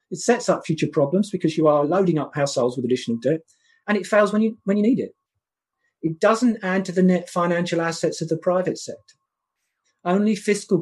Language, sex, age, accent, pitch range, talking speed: English, male, 40-59, British, 145-190 Hz, 200 wpm